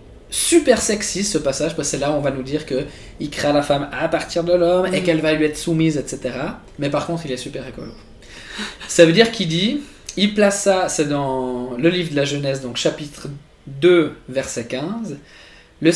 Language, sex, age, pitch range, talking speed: French, male, 20-39, 140-190 Hz, 205 wpm